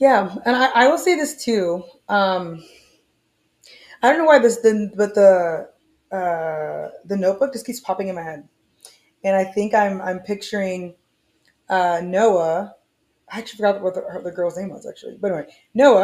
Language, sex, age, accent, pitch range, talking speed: English, female, 20-39, American, 185-230 Hz, 180 wpm